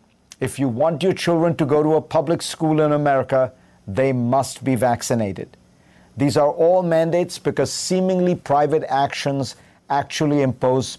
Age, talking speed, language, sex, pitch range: 50-69, 145 wpm, English, male, 130-155 Hz